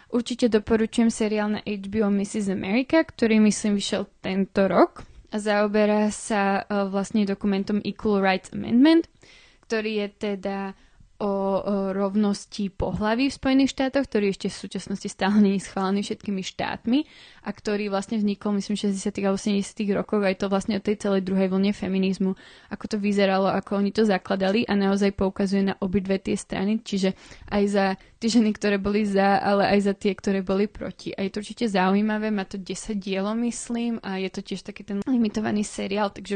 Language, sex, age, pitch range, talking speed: Slovak, female, 20-39, 195-220 Hz, 170 wpm